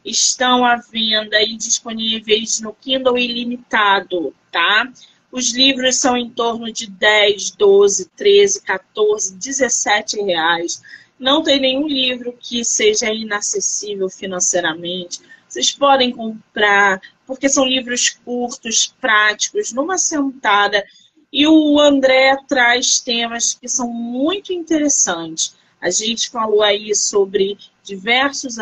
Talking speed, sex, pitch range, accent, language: 115 wpm, female, 210-270 Hz, Brazilian, Portuguese